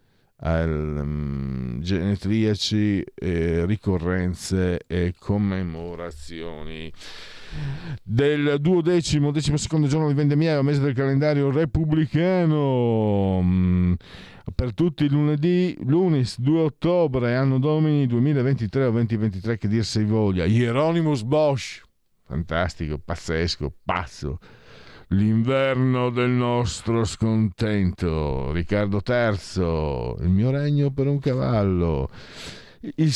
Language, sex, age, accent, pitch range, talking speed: Italian, male, 50-69, native, 90-140 Hz, 95 wpm